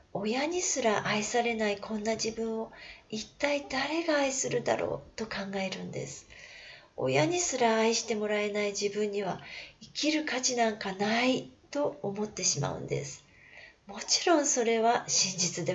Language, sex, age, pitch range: Japanese, female, 40-59, 185-235 Hz